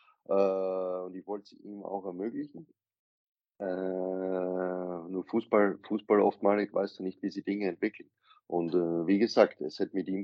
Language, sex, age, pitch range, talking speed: German, male, 20-39, 90-105 Hz, 160 wpm